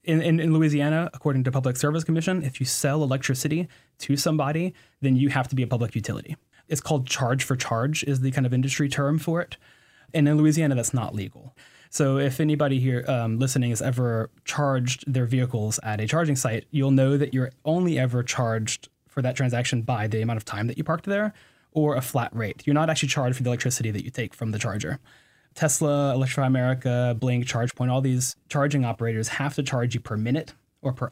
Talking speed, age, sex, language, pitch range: 210 wpm, 20-39, male, English, 120-145 Hz